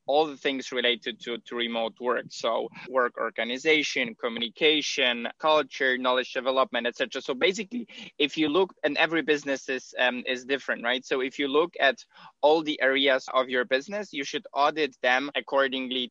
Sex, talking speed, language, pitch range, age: male, 170 wpm, English, 125-155 Hz, 20-39